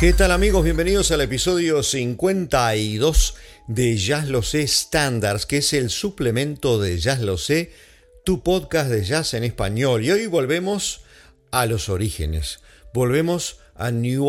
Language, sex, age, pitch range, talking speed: English, male, 50-69, 100-140 Hz, 145 wpm